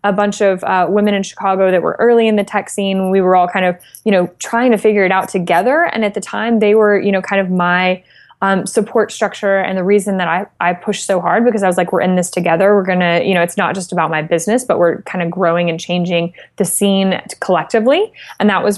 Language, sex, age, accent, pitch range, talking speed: English, female, 20-39, American, 180-210 Hz, 260 wpm